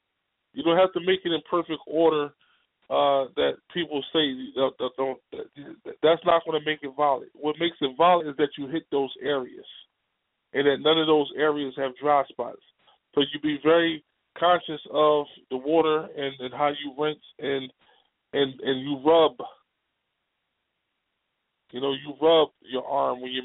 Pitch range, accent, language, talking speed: 140-170 Hz, American, English, 170 wpm